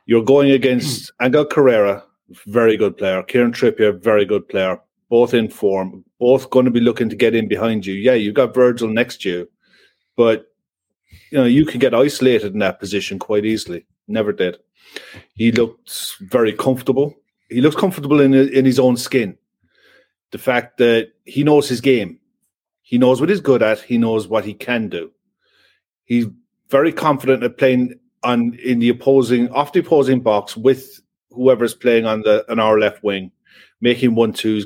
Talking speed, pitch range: 175 wpm, 110-135 Hz